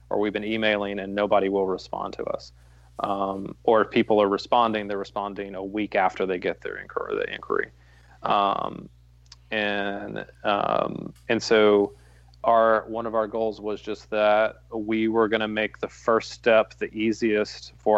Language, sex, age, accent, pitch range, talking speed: English, male, 30-49, American, 100-110 Hz, 170 wpm